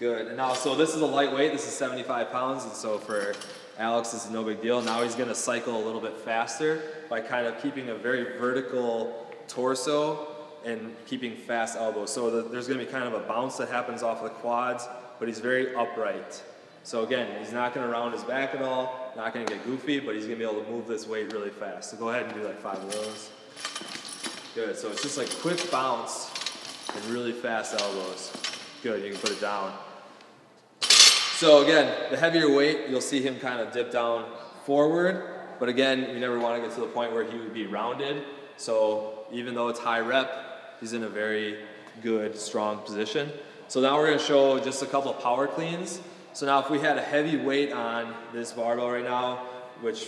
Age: 20-39